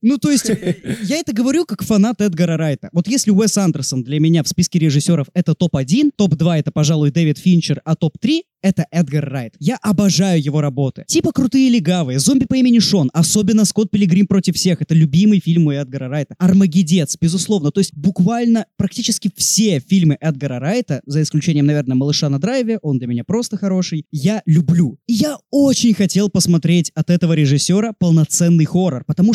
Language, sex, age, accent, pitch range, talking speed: Russian, male, 20-39, native, 160-230 Hz, 180 wpm